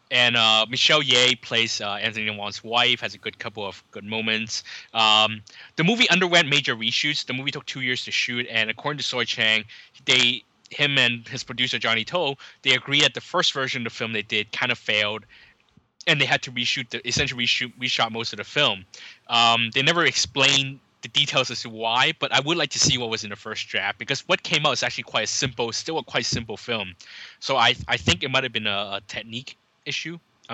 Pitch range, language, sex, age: 110-130 Hz, English, male, 20-39